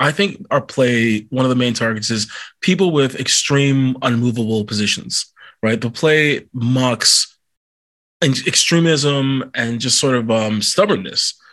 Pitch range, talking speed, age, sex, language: 115-140 Hz, 135 wpm, 20-39, male, English